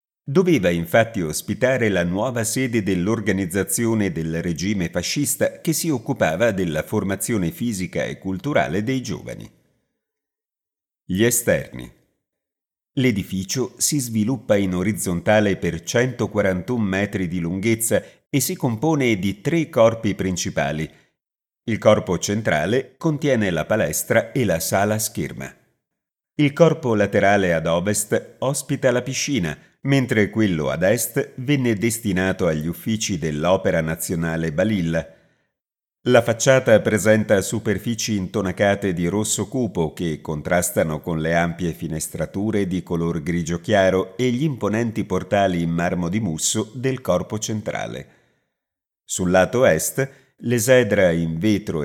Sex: male